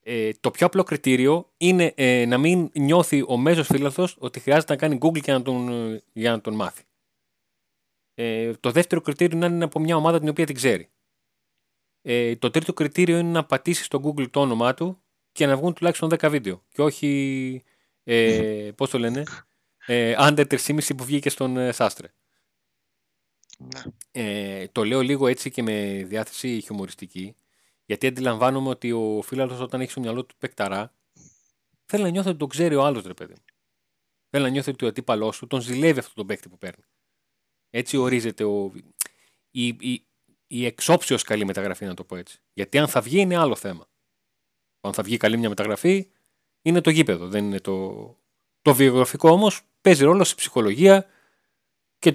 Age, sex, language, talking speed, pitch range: 30-49, male, Greek, 175 wpm, 115-160 Hz